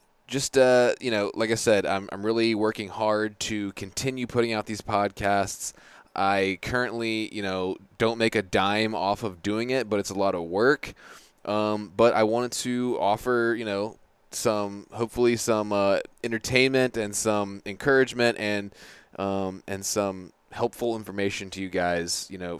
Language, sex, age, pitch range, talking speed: English, male, 20-39, 100-120 Hz, 165 wpm